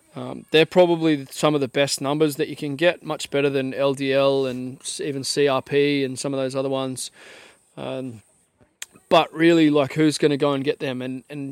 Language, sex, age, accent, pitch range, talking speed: English, male, 20-39, Australian, 135-155 Hz, 200 wpm